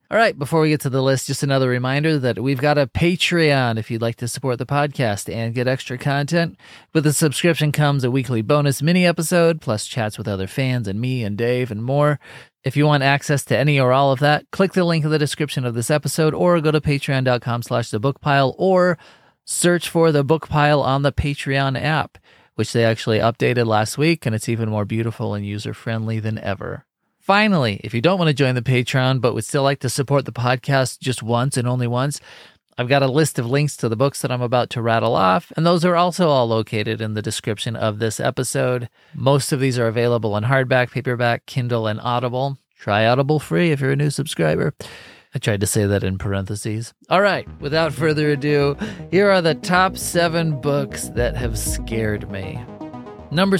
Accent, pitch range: American, 115-150 Hz